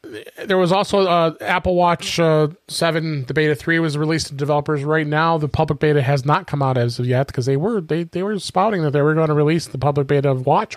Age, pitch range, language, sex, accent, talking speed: 30-49, 135-155 Hz, English, male, American, 250 wpm